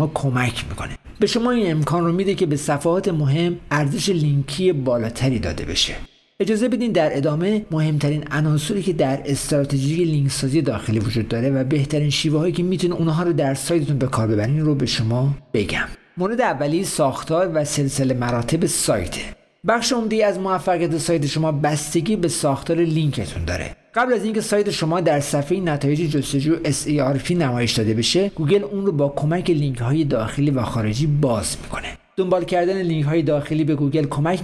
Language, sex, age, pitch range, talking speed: Persian, male, 50-69, 135-175 Hz, 170 wpm